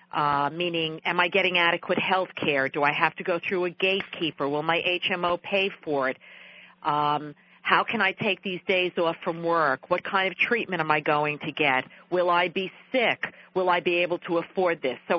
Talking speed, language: 210 wpm, English